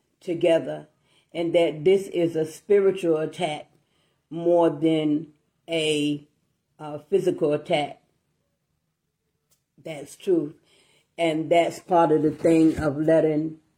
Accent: American